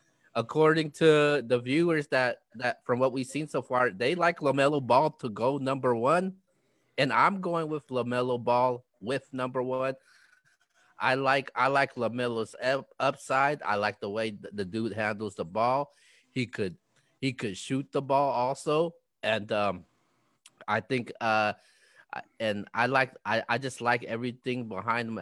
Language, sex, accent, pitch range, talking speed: English, male, American, 110-135 Hz, 160 wpm